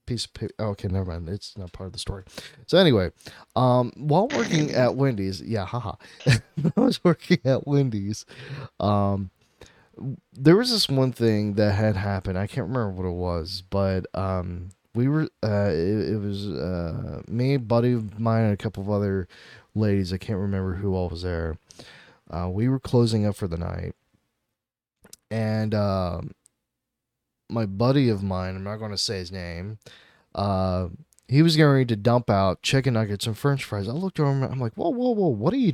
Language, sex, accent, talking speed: English, male, American, 200 wpm